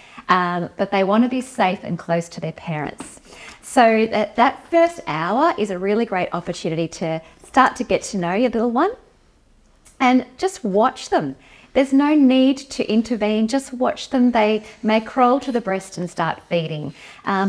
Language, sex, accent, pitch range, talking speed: English, female, Australian, 185-255 Hz, 180 wpm